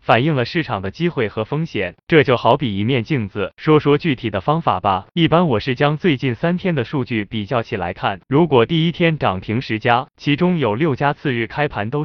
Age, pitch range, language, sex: 20-39, 110-155 Hz, Chinese, male